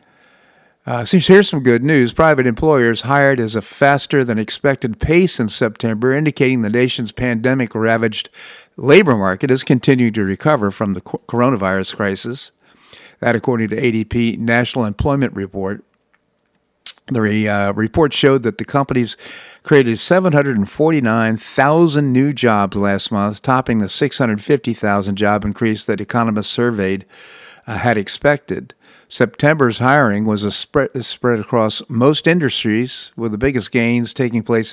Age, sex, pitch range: 50-69, male, 105-130 Hz